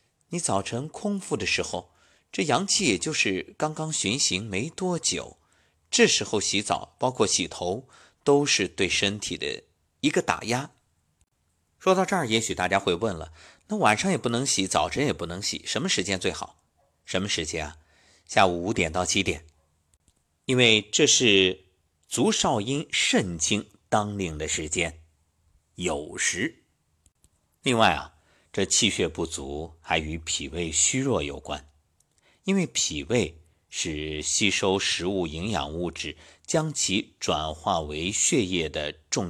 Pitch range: 80-125 Hz